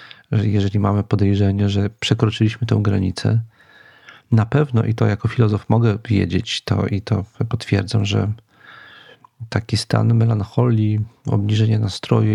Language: Polish